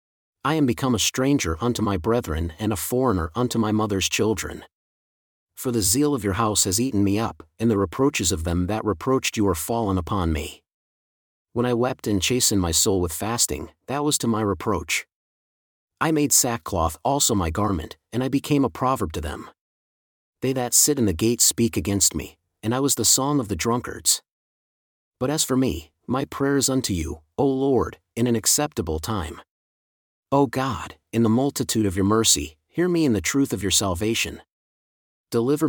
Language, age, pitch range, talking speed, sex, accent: English, 40-59, 95-130 Hz, 190 wpm, male, American